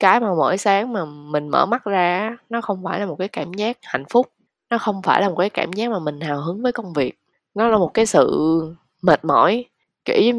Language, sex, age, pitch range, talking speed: Vietnamese, female, 10-29, 155-215 Hz, 250 wpm